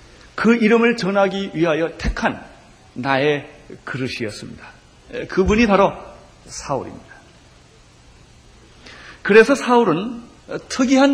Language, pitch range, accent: Korean, 130-210 Hz, native